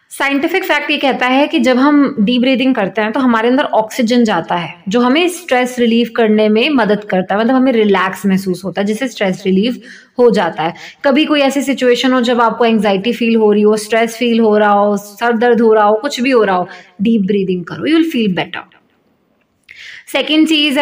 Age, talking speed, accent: 20-39, 215 wpm, native